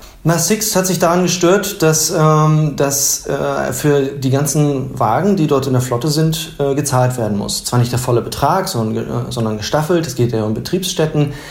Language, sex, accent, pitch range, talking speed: German, male, German, 125-150 Hz, 200 wpm